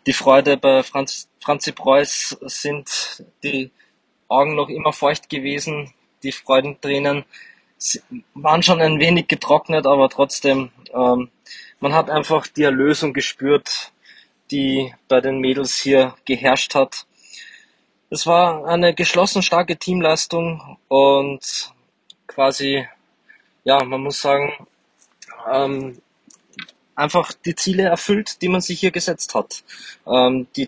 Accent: German